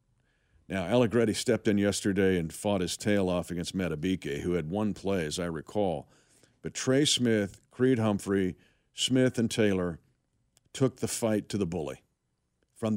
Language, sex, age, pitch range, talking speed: English, male, 50-69, 95-130 Hz, 155 wpm